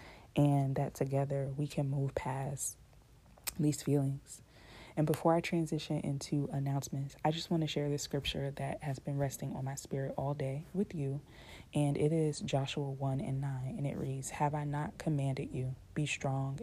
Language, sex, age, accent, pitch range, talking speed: English, female, 20-39, American, 130-145 Hz, 180 wpm